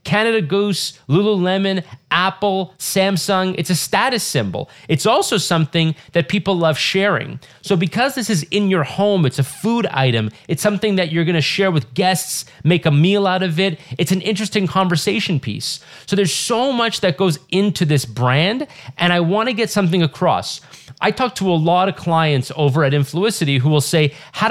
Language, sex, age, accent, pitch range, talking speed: English, male, 30-49, American, 140-190 Hz, 185 wpm